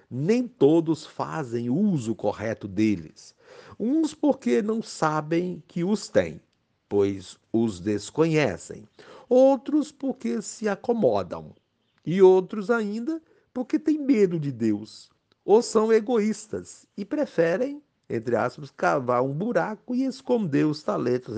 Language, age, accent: Portuguese, 60-79, Brazilian